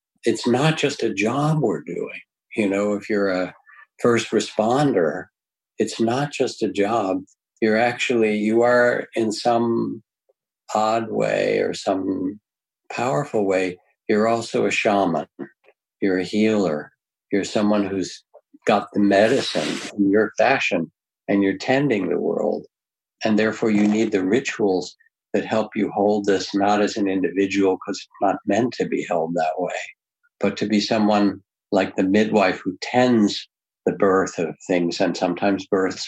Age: 60-79